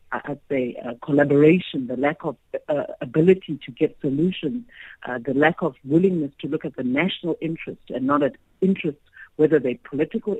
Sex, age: female, 60-79